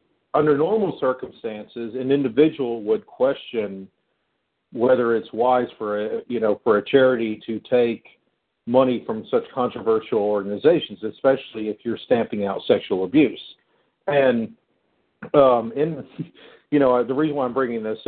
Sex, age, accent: male, 50-69, American